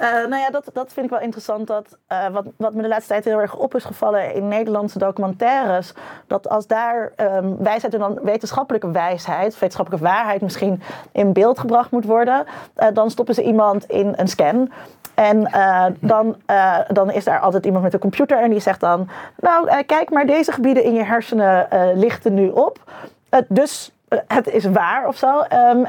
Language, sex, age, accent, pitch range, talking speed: Dutch, female, 30-49, Dutch, 195-255 Hz, 205 wpm